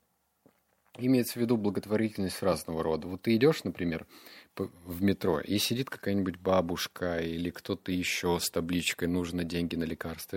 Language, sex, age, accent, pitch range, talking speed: Russian, male, 30-49, native, 90-110 Hz, 145 wpm